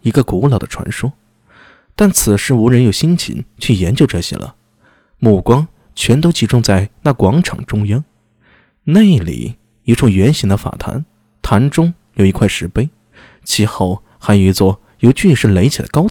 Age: 20-39